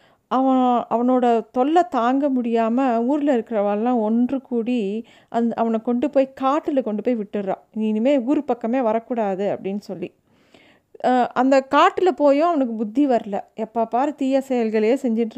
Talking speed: 125 wpm